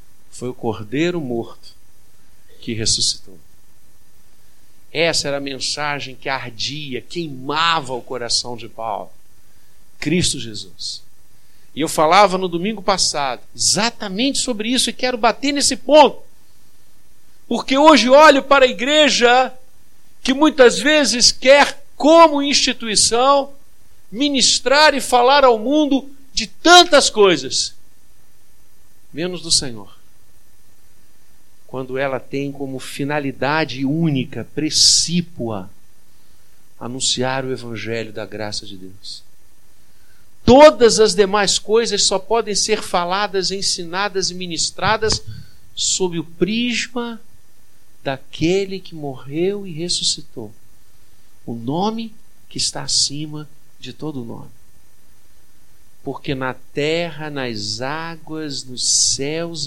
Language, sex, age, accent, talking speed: Portuguese, male, 50-69, Brazilian, 105 wpm